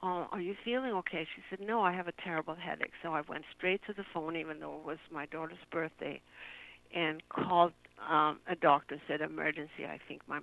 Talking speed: 220 wpm